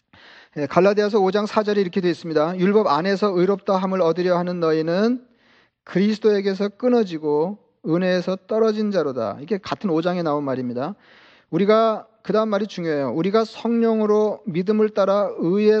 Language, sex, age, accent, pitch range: Korean, male, 40-59, native, 170-210 Hz